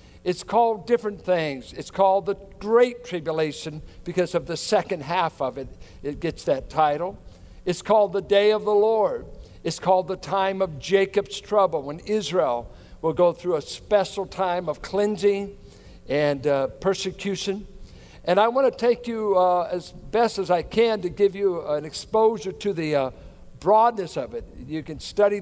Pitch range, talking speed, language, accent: 165-220 Hz, 170 wpm, English, American